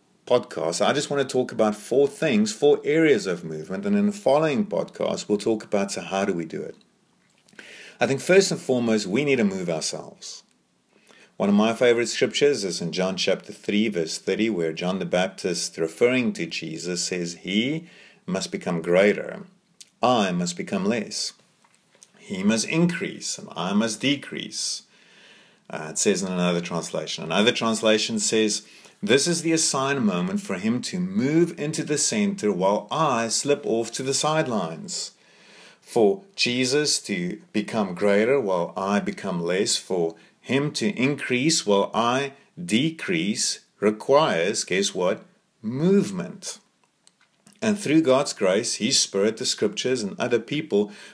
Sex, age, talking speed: male, 50-69, 155 wpm